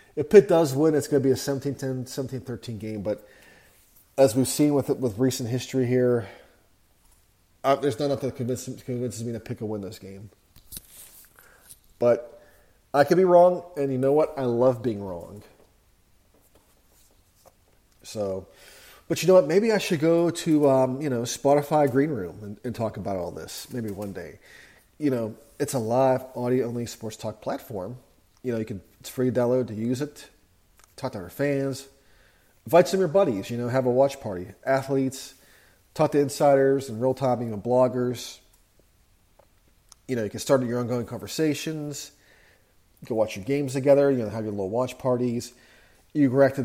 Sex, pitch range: male, 105-135 Hz